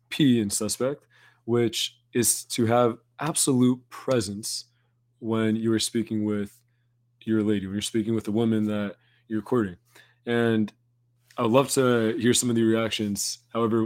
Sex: male